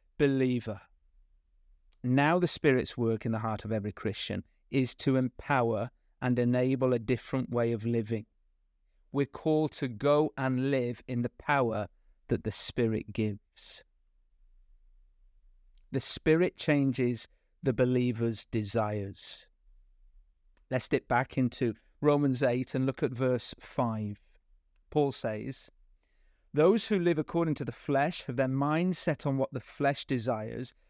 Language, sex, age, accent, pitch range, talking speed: English, male, 40-59, British, 110-150 Hz, 135 wpm